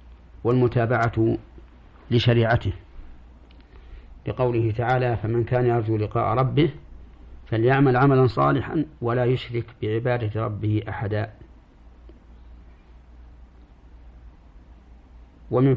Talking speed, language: 70 wpm, Arabic